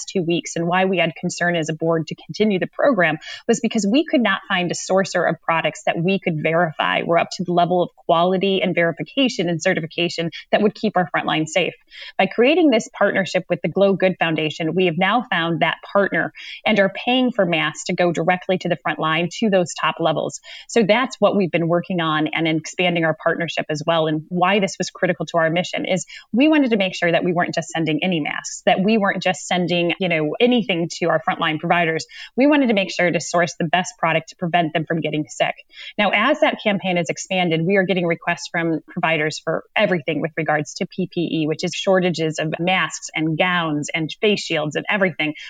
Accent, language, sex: American, English, female